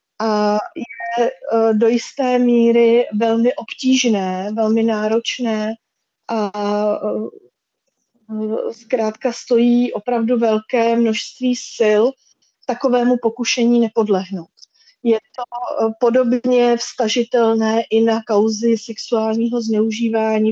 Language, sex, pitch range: Slovak, female, 220-240 Hz